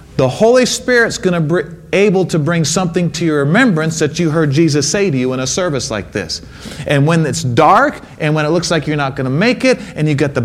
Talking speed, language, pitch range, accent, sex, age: 255 wpm, English, 125-190 Hz, American, male, 40-59